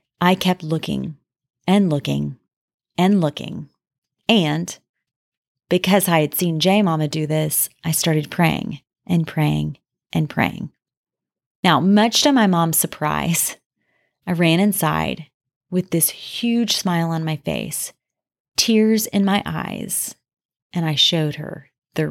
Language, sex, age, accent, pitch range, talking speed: English, female, 30-49, American, 155-195 Hz, 130 wpm